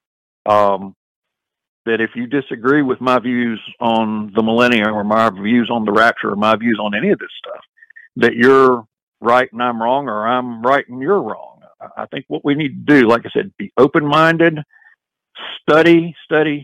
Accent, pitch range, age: American, 115-140 Hz, 50-69